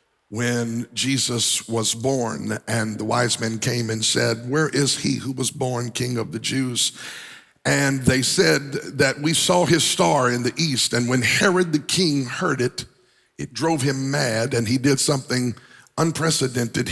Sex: male